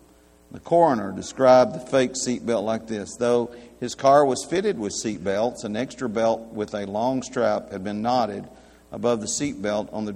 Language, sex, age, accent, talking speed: English, male, 50-69, American, 175 wpm